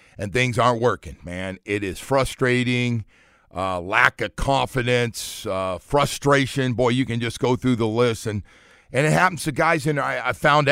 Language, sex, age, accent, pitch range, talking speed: English, male, 50-69, American, 115-135 Hz, 185 wpm